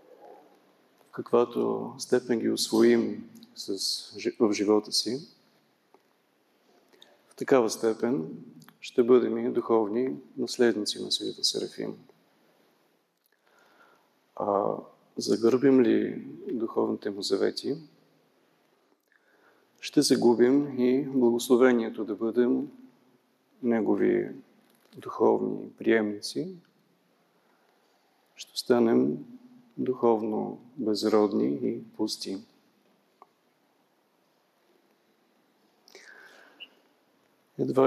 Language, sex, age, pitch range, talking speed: Bulgarian, male, 40-59, 110-185 Hz, 65 wpm